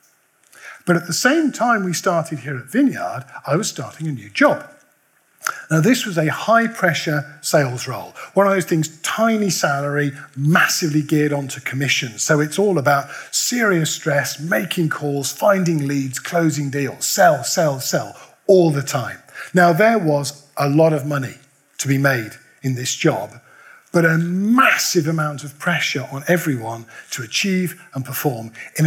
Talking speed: 160 wpm